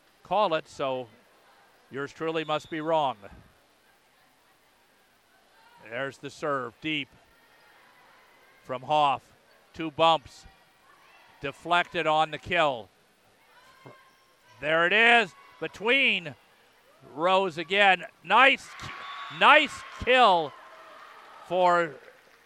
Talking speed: 80 wpm